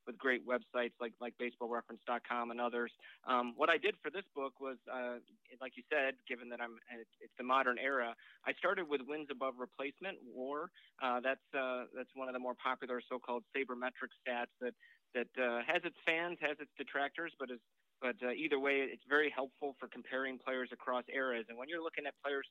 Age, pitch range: 30-49, 120-140 Hz